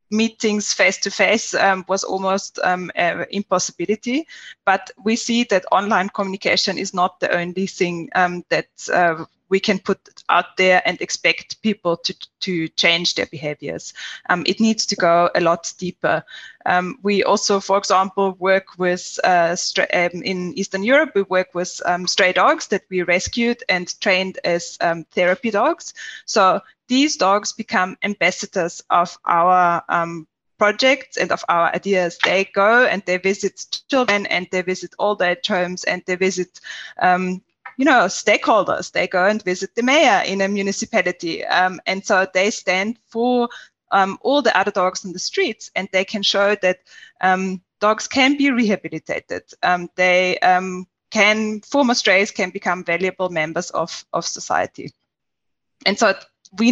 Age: 20-39